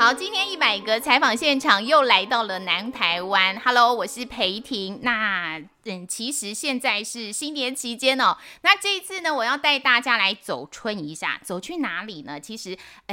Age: 20-39